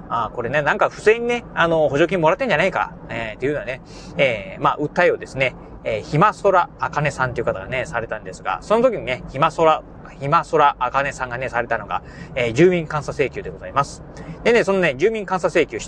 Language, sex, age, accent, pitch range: Japanese, male, 30-49, native, 150-200 Hz